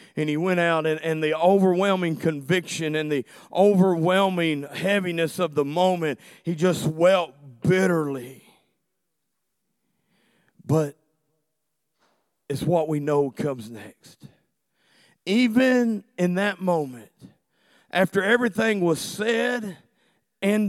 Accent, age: American, 40-59